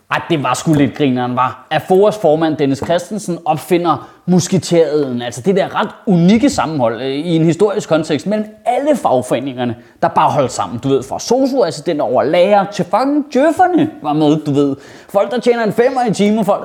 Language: Danish